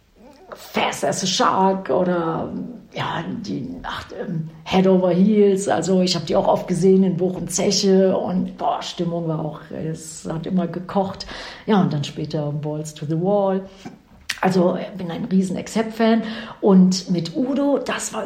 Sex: female